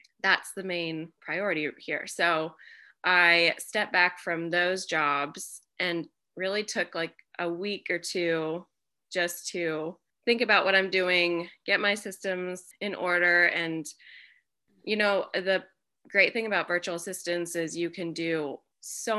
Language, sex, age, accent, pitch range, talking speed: English, female, 20-39, American, 170-200 Hz, 145 wpm